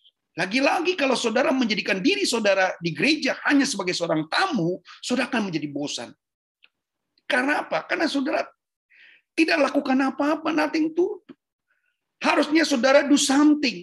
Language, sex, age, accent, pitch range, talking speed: Indonesian, male, 40-59, native, 200-290 Hz, 125 wpm